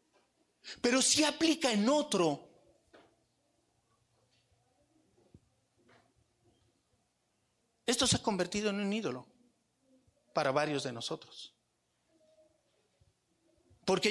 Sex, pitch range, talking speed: male, 180-275 Hz, 70 wpm